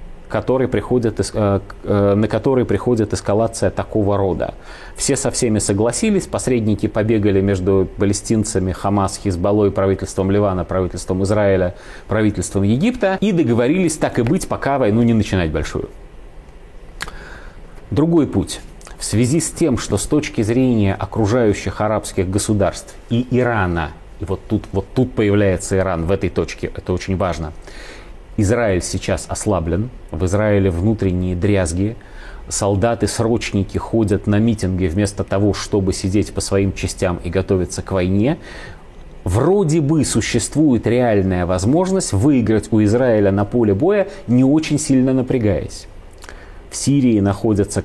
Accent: native